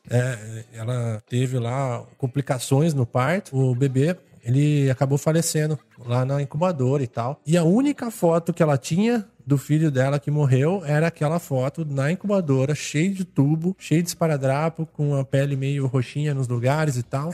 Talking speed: 170 wpm